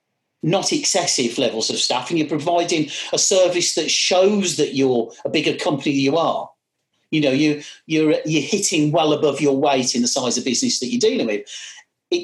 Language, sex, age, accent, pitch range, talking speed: English, male, 40-59, British, 140-185 Hz, 195 wpm